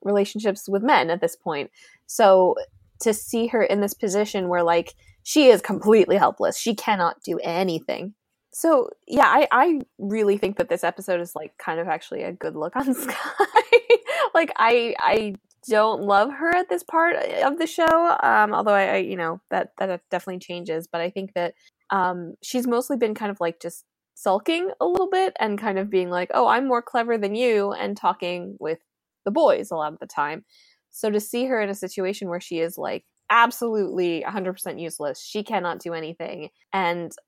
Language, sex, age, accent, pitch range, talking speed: English, female, 20-39, American, 170-245 Hz, 195 wpm